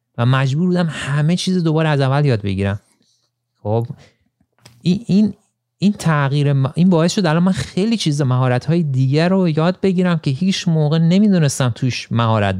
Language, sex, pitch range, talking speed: Persian, male, 115-155 Hz, 160 wpm